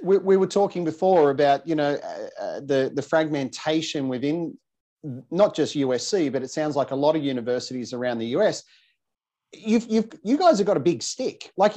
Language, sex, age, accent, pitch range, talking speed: English, male, 40-59, Australian, 140-185 Hz, 185 wpm